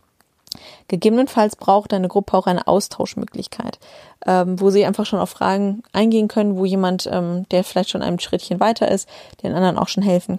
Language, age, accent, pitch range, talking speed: German, 20-39, German, 185-215 Hz, 170 wpm